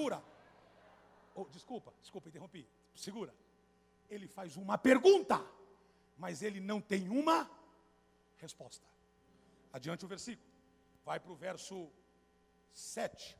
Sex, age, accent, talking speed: male, 60-79, Brazilian, 105 wpm